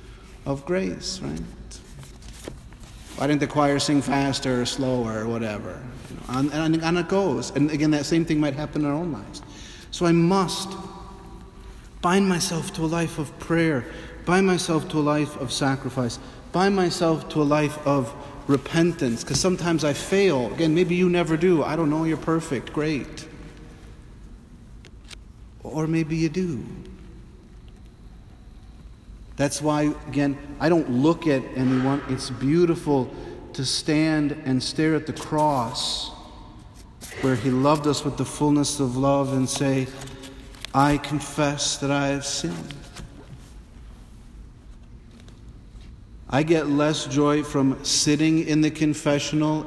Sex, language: male, English